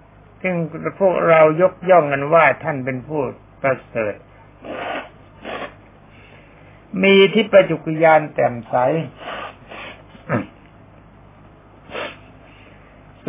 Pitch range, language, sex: 135-190 Hz, Thai, male